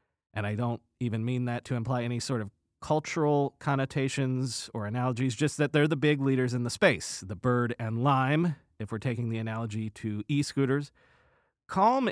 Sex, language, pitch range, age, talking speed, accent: male, English, 125-165 Hz, 40-59, 180 wpm, American